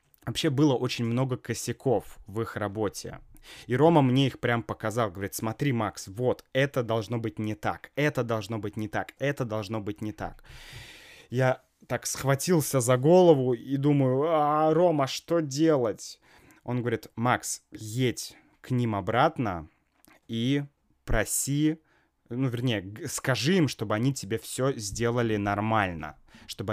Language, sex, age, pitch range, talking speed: Russian, male, 20-39, 115-150 Hz, 145 wpm